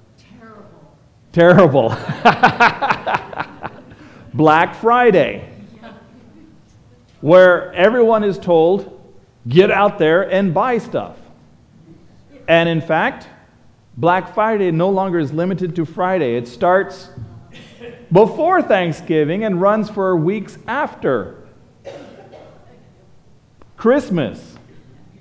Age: 40-59